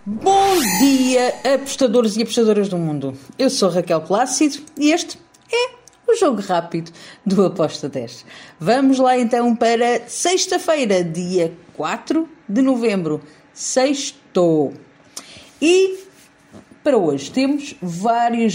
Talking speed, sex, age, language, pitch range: 115 wpm, female, 50-69, Portuguese, 195-270 Hz